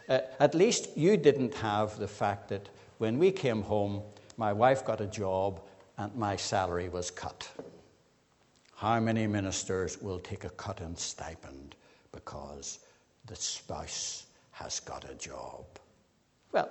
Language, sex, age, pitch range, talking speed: English, male, 60-79, 95-130 Hz, 145 wpm